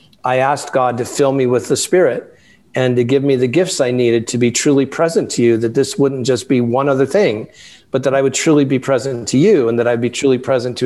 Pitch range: 125-150 Hz